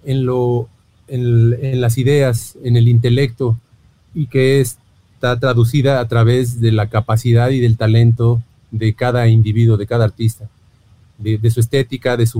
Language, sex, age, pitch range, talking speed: English, male, 40-59, 110-135 Hz, 165 wpm